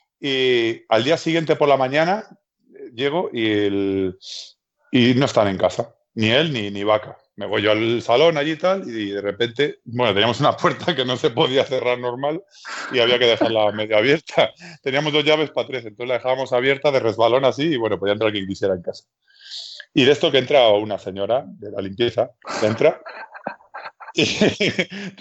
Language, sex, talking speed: Spanish, male, 190 wpm